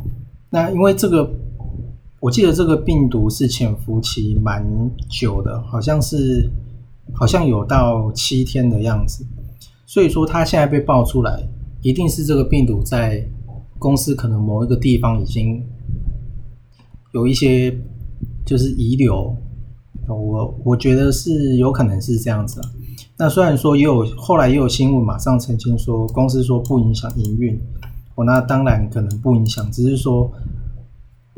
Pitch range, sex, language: 115-130 Hz, male, Chinese